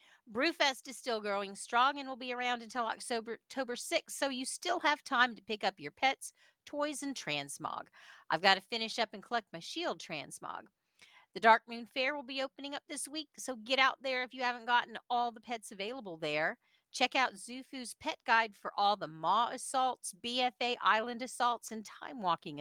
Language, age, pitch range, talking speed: English, 50-69, 180-260 Hz, 195 wpm